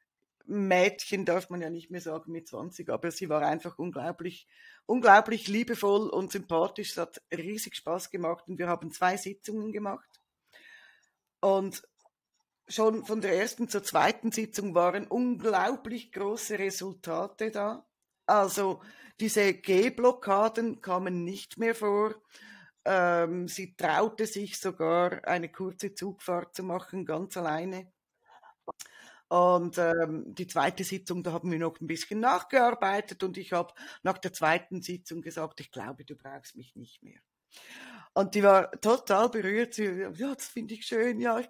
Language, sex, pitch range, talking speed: German, female, 175-215 Hz, 145 wpm